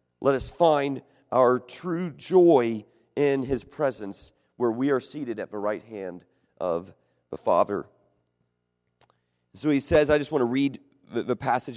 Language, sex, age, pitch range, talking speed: English, male, 40-59, 105-170 Hz, 160 wpm